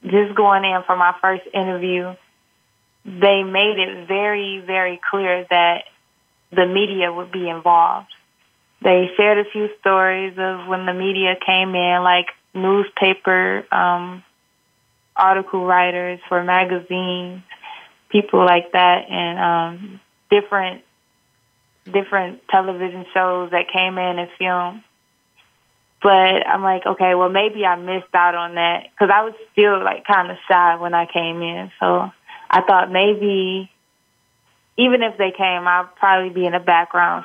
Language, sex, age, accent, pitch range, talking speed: English, female, 20-39, American, 175-195 Hz, 145 wpm